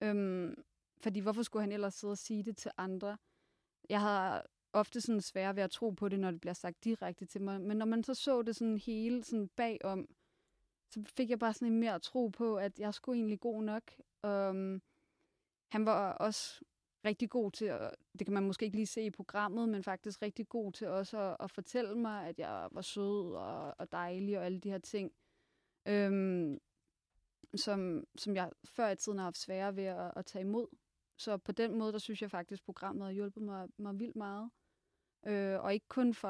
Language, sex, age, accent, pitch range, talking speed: Danish, female, 20-39, native, 195-220 Hz, 210 wpm